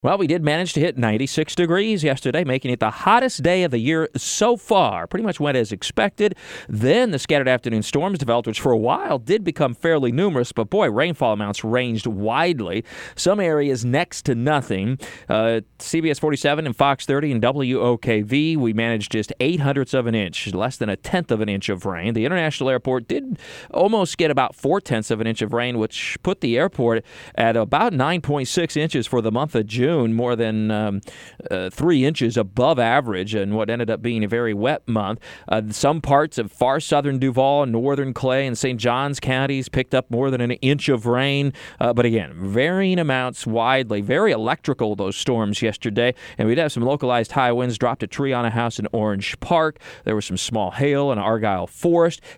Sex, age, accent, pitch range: male, 40-59, American, 115-145 Hz